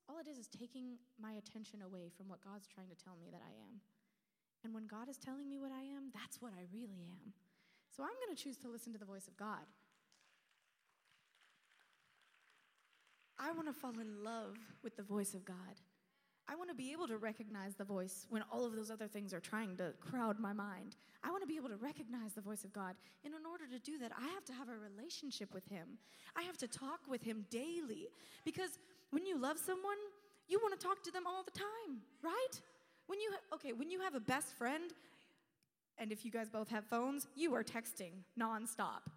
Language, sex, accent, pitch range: English, female, American, 215-320 Hz